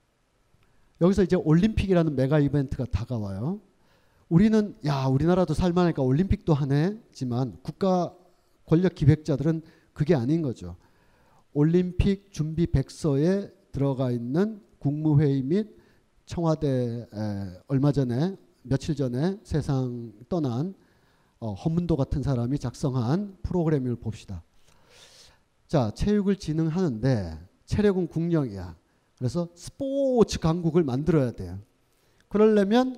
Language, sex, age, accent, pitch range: Korean, male, 40-59, native, 130-205 Hz